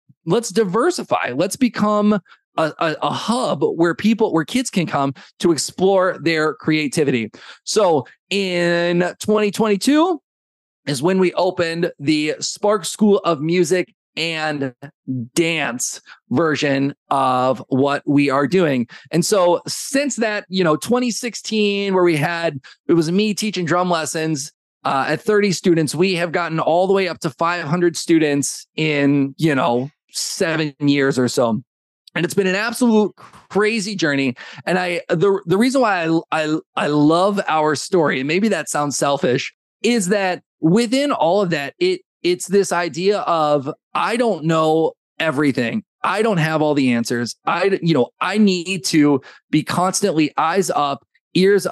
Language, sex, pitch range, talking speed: English, male, 145-195 Hz, 150 wpm